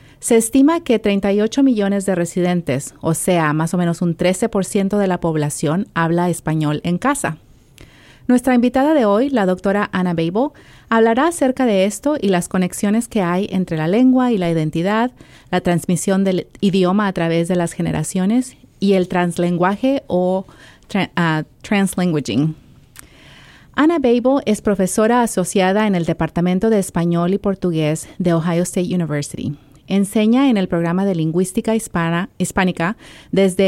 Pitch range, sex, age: 170-220 Hz, female, 30-49